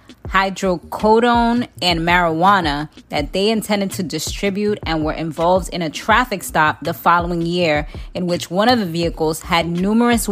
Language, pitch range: English, 185-250 Hz